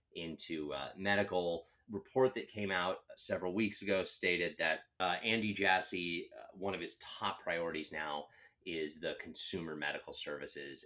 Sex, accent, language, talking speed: male, American, English, 155 wpm